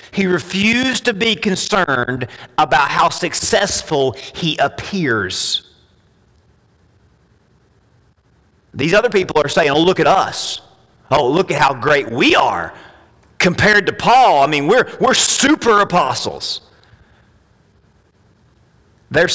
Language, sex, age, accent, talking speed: English, male, 40-59, American, 110 wpm